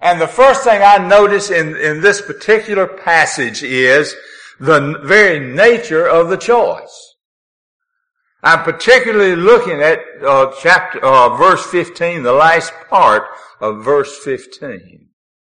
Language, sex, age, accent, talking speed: English, male, 60-79, American, 130 wpm